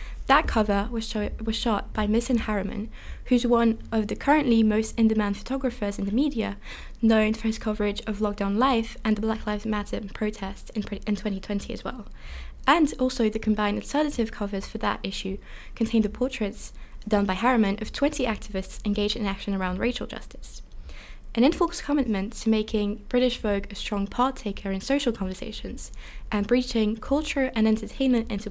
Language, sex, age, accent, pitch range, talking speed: English, female, 20-39, British, 205-245 Hz, 170 wpm